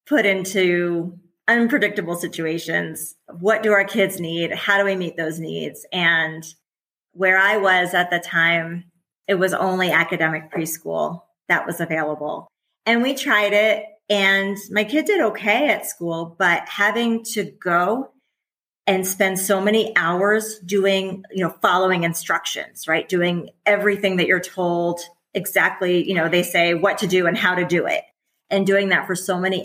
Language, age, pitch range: English, 30-49, 170-200 Hz